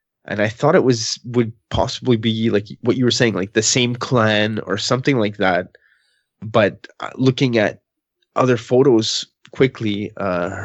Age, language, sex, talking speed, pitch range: 20-39, English, male, 160 wpm, 110-130 Hz